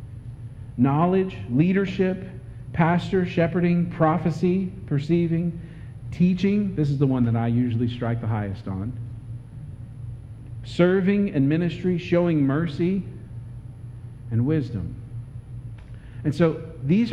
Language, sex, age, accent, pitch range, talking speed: English, male, 50-69, American, 120-155 Hz, 100 wpm